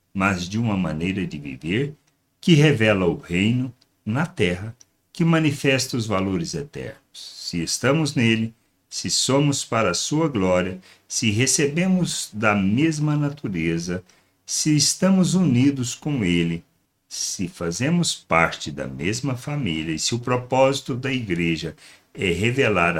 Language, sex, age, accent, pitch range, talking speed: Portuguese, male, 60-79, Brazilian, 90-140 Hz, 130 wpm